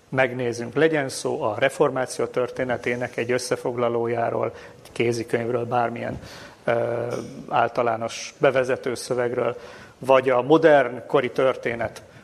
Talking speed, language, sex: 95 wpm, Hungarian, male